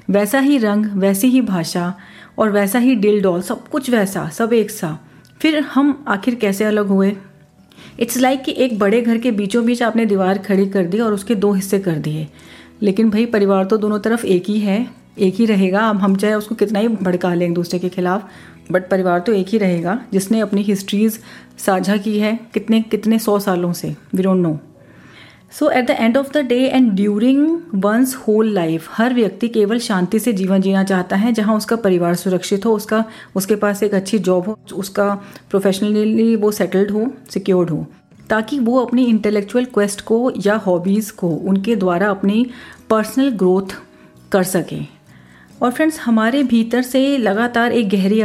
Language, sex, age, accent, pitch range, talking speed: Hindi, female, 30-49, native, 190-230 Hz, 185 wpm